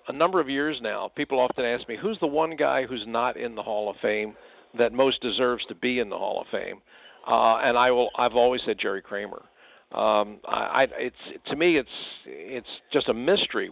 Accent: American